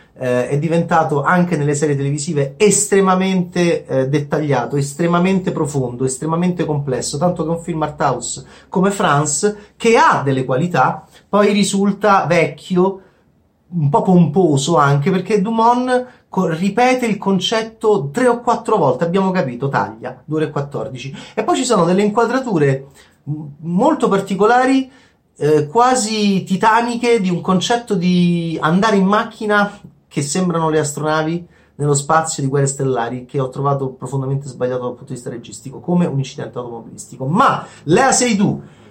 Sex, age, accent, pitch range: male, 30-49, native, 150-205 Hz